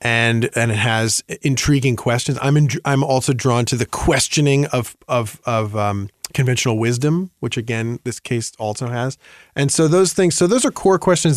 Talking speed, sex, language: 180 wpm, male, English